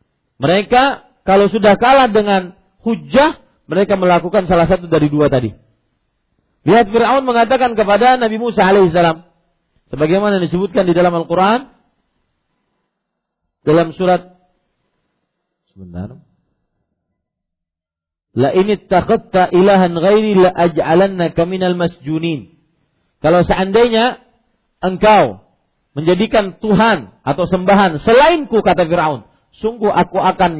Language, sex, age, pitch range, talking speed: Malay, male, 40-59, 155-220 Hz, 100 wpm